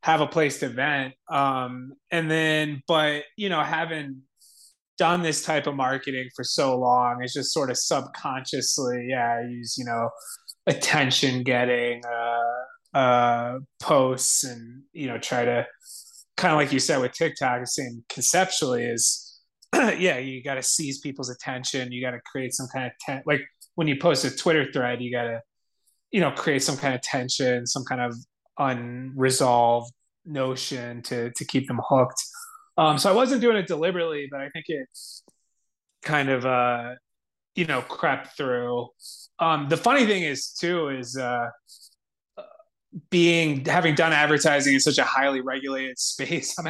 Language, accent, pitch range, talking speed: English, American, 125-155 Hz, 165 wpm